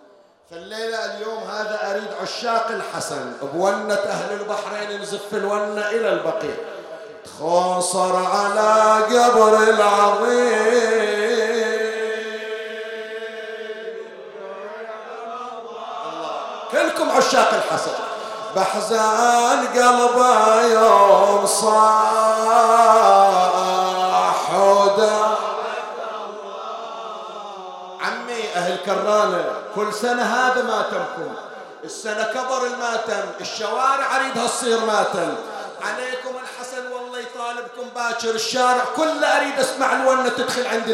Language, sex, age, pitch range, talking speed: Arabic, male, 50-69, 205-230 Hz, 75 wpm